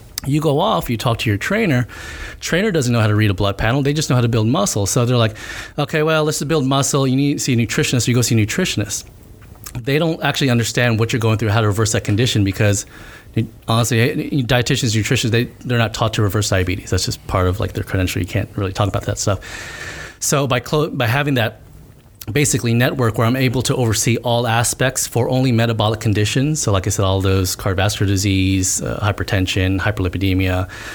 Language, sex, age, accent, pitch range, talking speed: English, male, 30-49, American, 100-125 Hz, 215 wpm